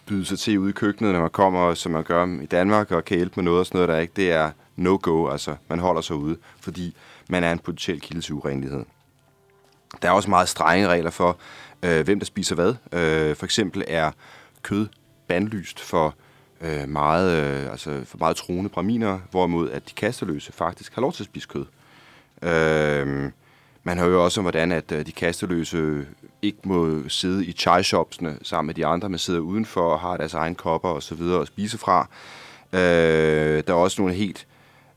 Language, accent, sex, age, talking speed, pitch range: Danish, native, male, 30-49, 185 wpm, 80-95 Hz